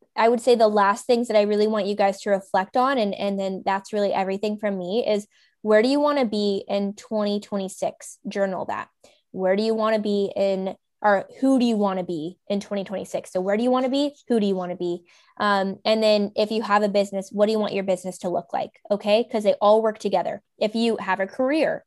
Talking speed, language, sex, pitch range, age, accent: 245 wpm, English, female, 200-230 Hz, 10-29, American